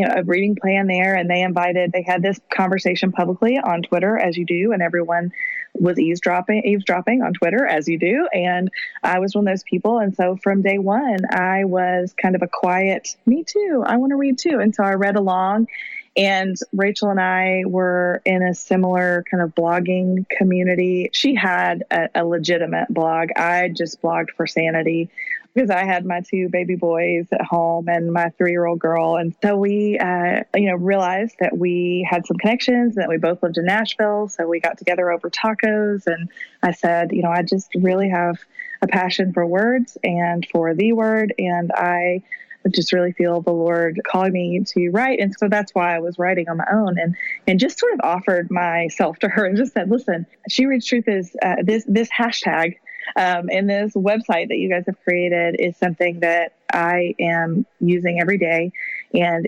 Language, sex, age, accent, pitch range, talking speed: English, female, 20-39, American, 175-205 Hz, 195 wpm